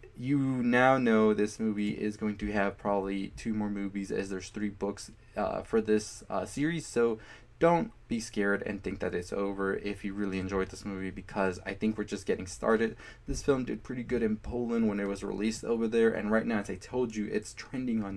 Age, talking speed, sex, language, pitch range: 20-39, 220 wpm, male, English, 100-115 Hz